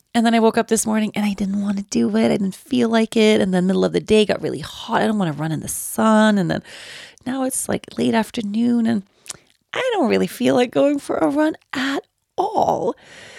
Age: 30-49